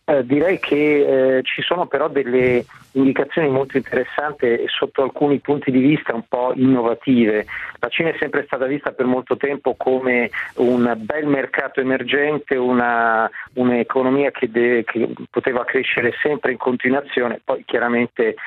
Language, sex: Italian, male